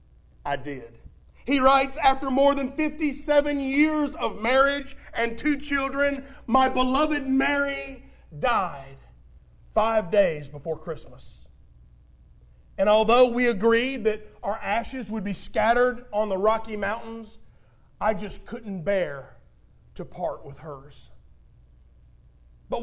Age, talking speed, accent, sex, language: 40-59, 120 wpm, American, male, English